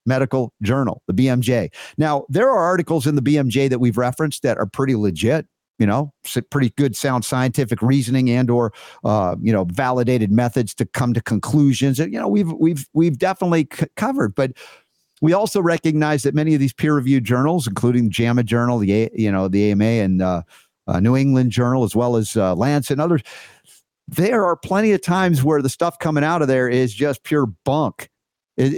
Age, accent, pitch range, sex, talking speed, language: 50-69, American, 120-150 Hz, male, 195 wpm, English